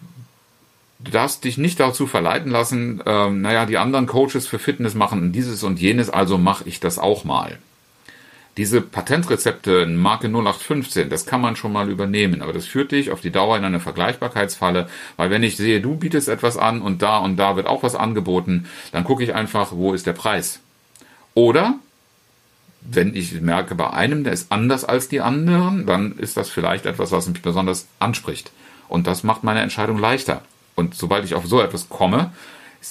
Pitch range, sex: 95-125 Hz, male